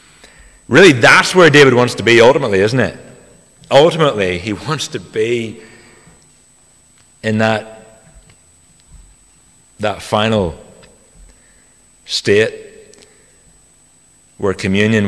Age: 40-59